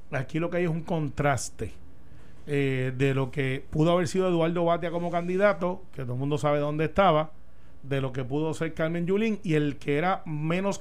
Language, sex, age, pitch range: Spanish, male, 40-59, 145-175 Hz